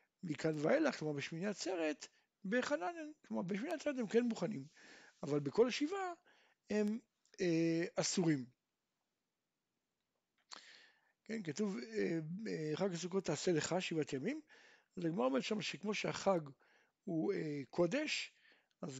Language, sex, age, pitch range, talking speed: Hebrew, male, 60-79, 160-230 Hz, 105 wpm